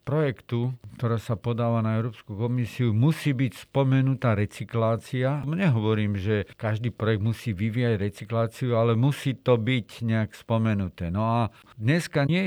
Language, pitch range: Slovak, 110-125 Hz